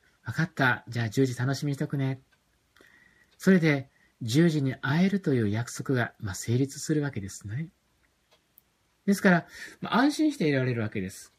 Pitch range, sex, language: 120-180 Hz, male, Japanese